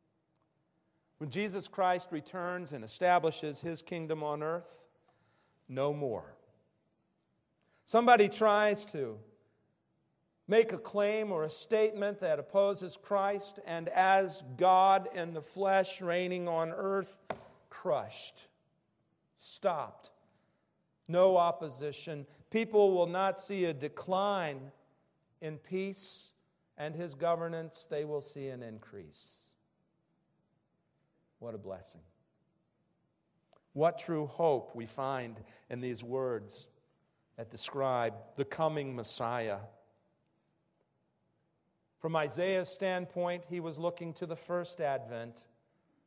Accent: American